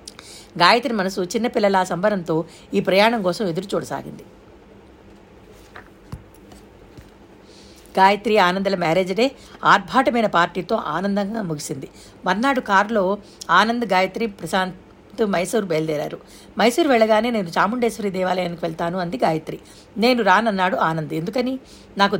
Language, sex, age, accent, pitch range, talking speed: Telugu, female, 50-69, native, 180-225 Hz, 100 wpm